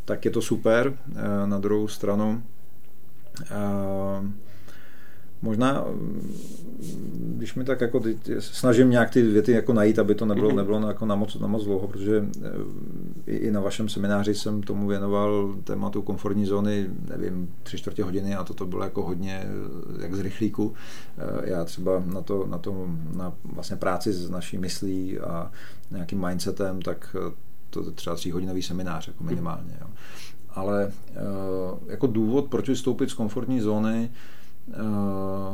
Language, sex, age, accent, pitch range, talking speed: Czech, male, 40-59, native, 95-110 Hz, 145 wpm